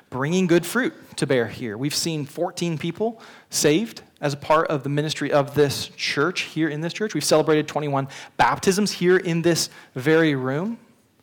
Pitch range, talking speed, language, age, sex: 140-175 Hz, 175 wpm, English, 30-49, male